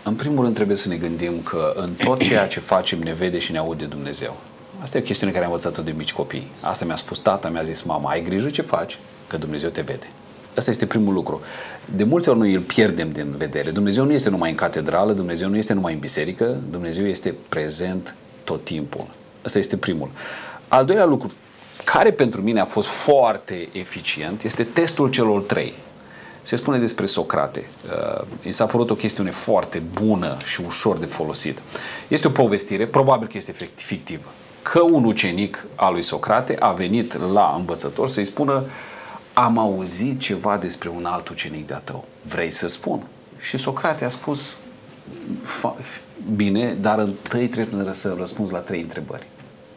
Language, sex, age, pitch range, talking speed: Romanian, male, 40-59, 85-120 Hz, 180 wpm